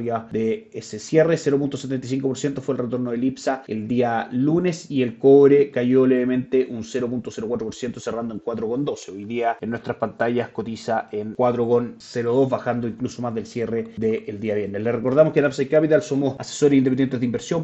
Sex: male